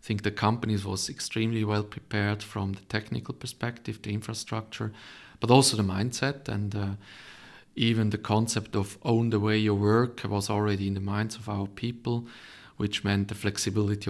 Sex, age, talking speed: male, 40-59, 175 wpm